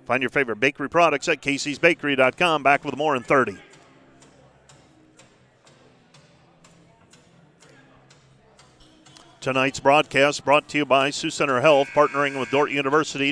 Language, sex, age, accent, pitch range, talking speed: English, male, 40-59, American, 140-175 Hz, 115 wpm